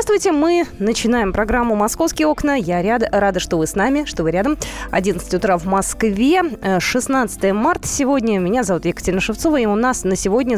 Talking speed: 175 wpm